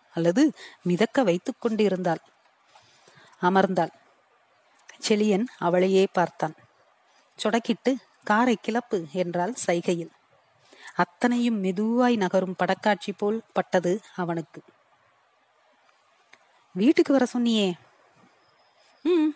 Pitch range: 185-240 Hz